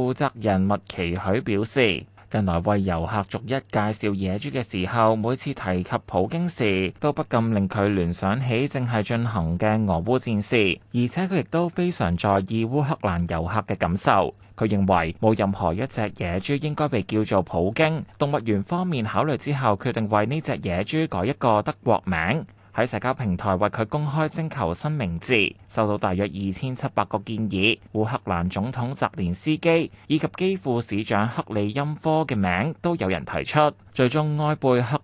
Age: 20-39